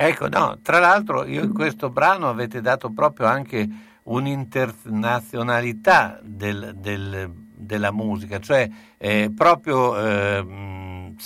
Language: Italian